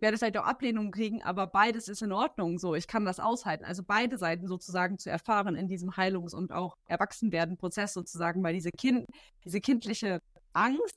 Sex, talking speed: female, 190 wpm